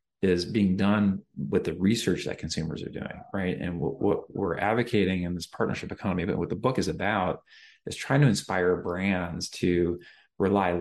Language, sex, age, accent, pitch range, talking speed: English, male, 30-49, American, 85-100 Hz, 185 wpm